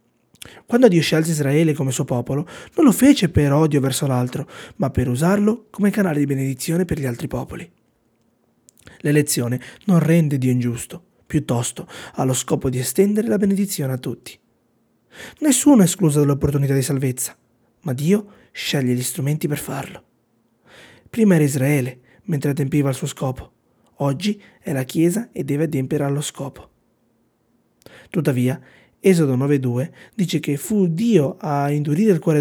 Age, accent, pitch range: 30-49, native, 135-185 Hz